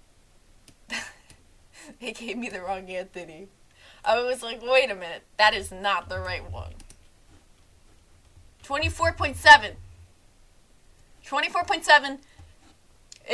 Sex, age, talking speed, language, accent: female, 20-39, 90 wpm, English, American